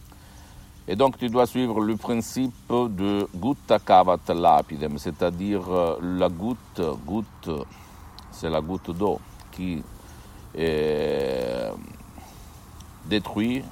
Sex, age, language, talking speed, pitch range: male, 60-79, Italian, 90 wpm, 80-100 Hz